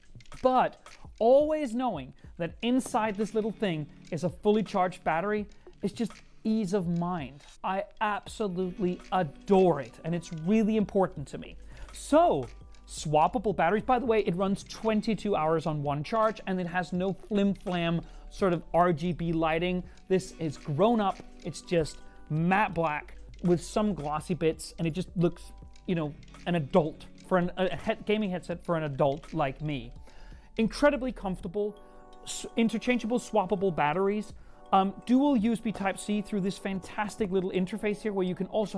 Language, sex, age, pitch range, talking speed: English, male, 30-49, 175-220 Hz, 155 wpm